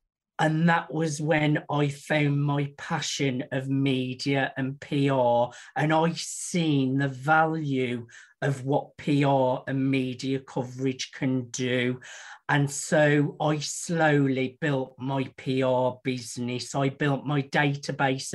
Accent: British